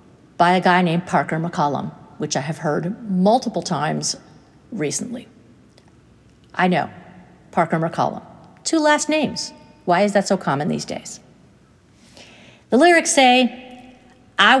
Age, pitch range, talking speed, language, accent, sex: 50-69, 175-245 Hz, 125 wpm, English, American, female